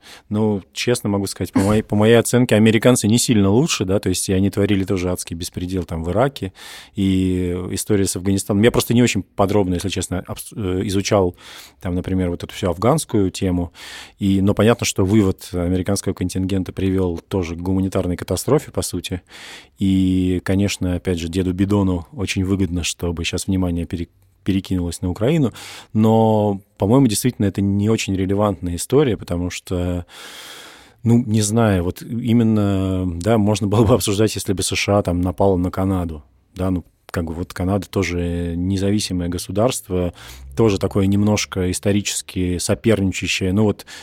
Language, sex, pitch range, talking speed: Russian, male, 90-105 Hz, 160 wpm